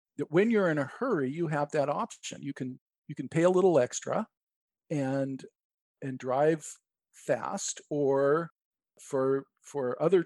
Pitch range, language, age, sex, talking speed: 140-175 Hz, English, 50-69, male, 145 wpm